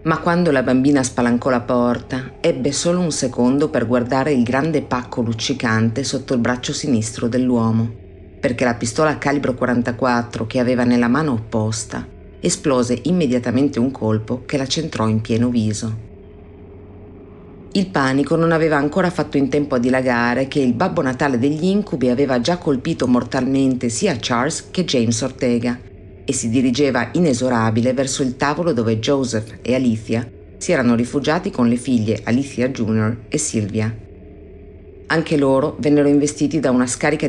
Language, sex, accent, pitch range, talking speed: Italian, female, native, 115-140 Hz, 155 wpm